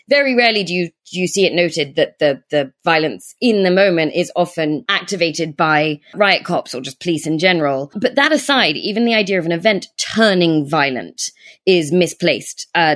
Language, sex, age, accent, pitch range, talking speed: English, female, 20-39, British, 160-210 Hz, 190 wpm